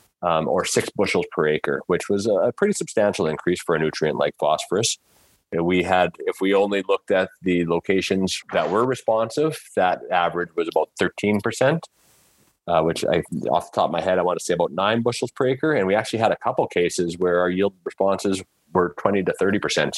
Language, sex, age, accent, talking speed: English, male, 30-49, American, 205 wpm